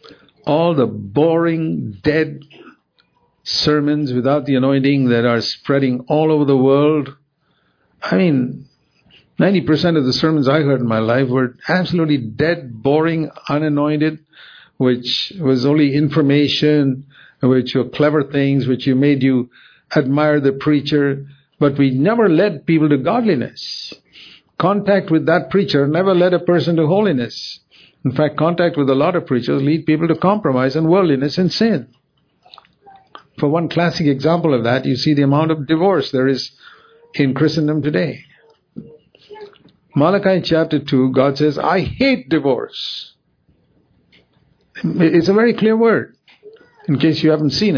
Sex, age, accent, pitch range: male, 50-69, Indian, 135-165 Hz